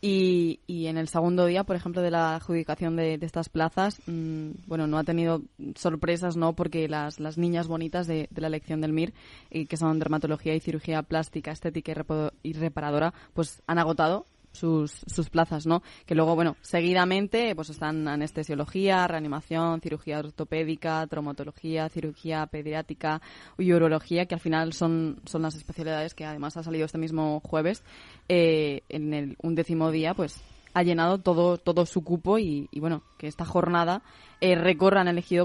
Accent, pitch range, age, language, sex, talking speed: Spanish, 155-175 Hz, 20-39, Spanish, female, 175 wpm